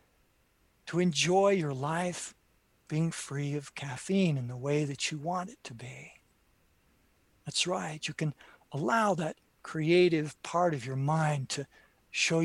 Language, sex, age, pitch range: English, male, 60-79, 135-165 Hz